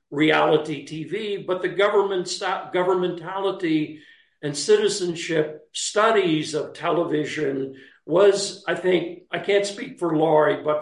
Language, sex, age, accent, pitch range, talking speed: English, male, 50-69, American, 150-190 Hz, 115 wpm